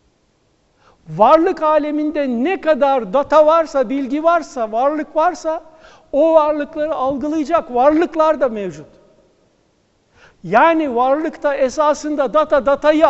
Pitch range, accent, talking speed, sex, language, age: 220-305 Hz, native, 100 wpm, male, Turkish, 60-79